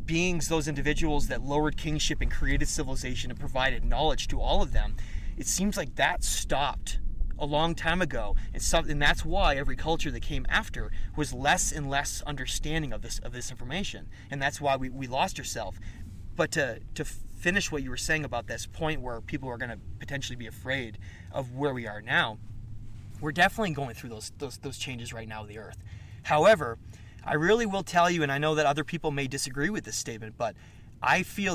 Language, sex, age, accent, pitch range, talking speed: English, male, 30-49, American, 115-155 Hz, 205 wpm